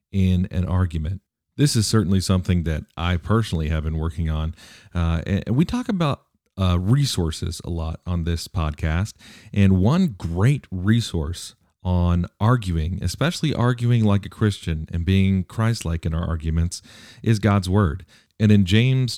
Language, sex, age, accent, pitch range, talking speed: English, male, 40-59, American, 85-110 Hz, 155 wpm